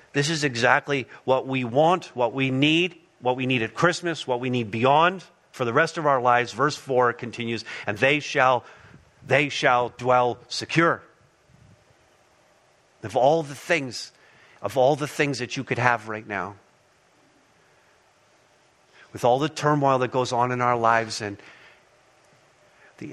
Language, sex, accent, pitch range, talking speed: English, male, American, 115-140 Hz, 155 wpm